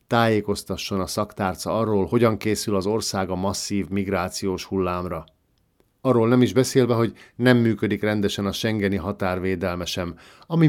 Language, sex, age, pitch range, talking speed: Hungarian, male, 50-69, 95-115 Hz, 140 wpm